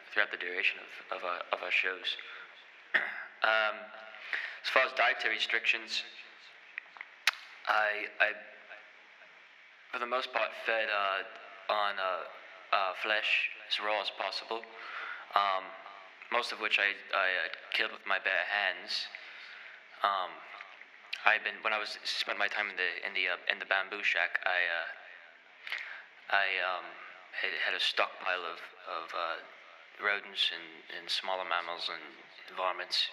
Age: 20-39